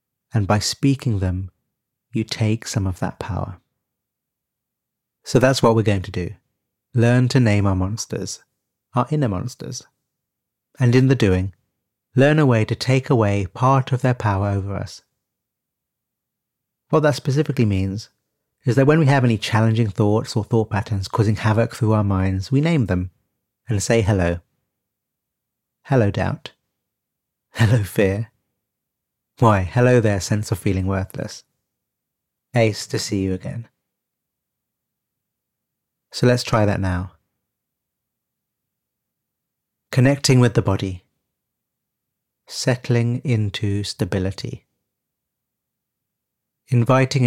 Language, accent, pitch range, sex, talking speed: English, British, 100-125 Hz, male, 120 wpm